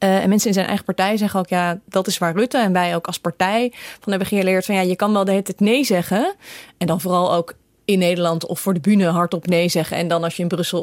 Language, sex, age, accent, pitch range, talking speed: Dutch, female, 20-39, Dutch, 170-210 Hz, 285 wpm